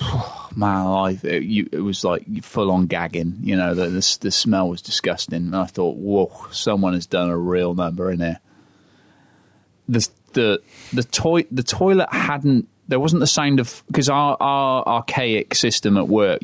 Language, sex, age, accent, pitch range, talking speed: English, male, 30-49, British, 95-125 Hz, 180 wpm